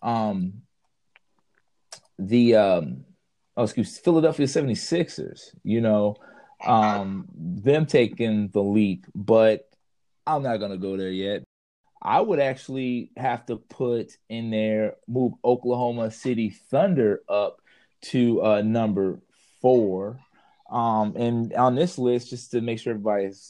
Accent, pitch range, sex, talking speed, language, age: American, 110-145 Hz, male, 130 wpm, English, 20-39